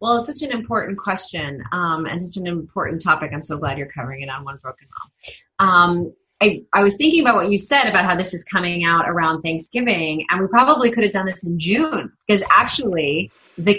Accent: American